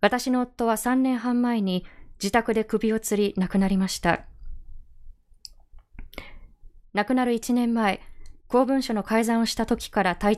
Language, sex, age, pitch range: Japanese, female, 20-39, 190-240 Hz